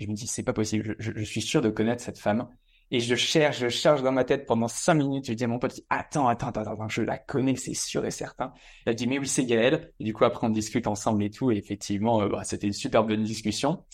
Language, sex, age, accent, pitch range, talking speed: English, male, 20-39, French, 110-130 Hz, 285 wpm